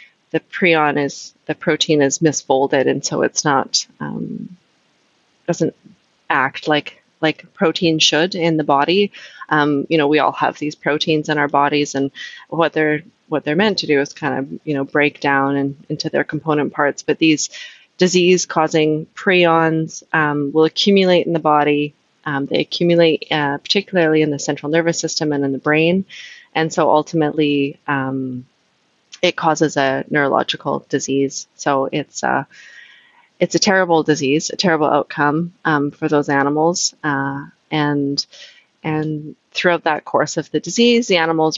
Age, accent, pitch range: 20-39, American, 145-165 Hz